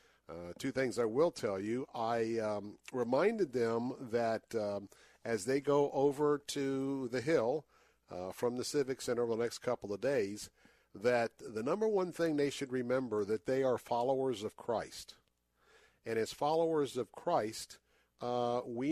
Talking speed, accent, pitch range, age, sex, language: 165 wpm, American, 115-135 Hz, 50-69, male, English